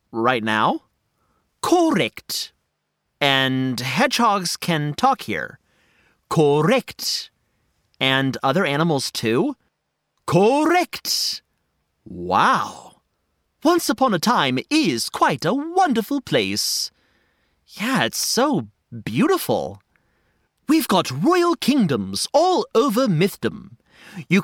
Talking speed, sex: 90 wpm, male